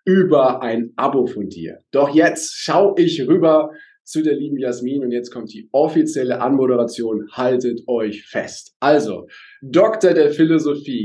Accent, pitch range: German, 120-170 Hz